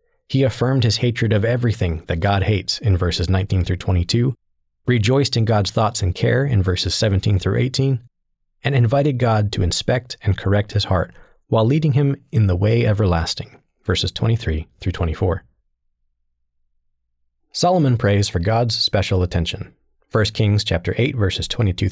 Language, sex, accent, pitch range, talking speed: English, male, American, 90-115 Hz, 155 wpm